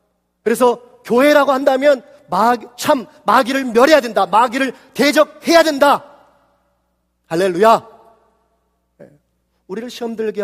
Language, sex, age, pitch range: Korean, male, 40-59, 150-245 Hz